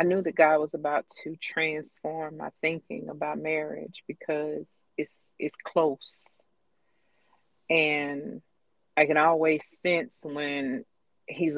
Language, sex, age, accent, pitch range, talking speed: English, female, 40-59, American, 145-165 Hz, 120 wpm